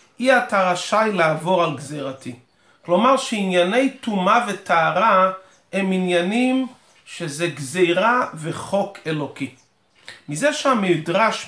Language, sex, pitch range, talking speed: Hebrew, male, 165-220 Hz, 95 wpm